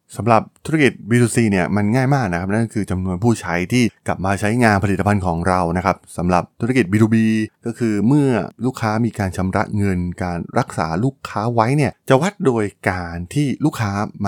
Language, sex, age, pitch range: Thai, male, 20-39, 90-120 Hz